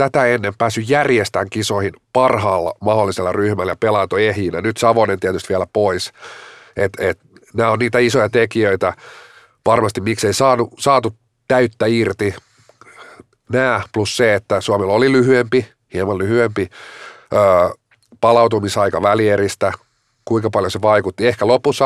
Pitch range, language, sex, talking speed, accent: 105-125 Hz, Finnish, male, 125 wpm, native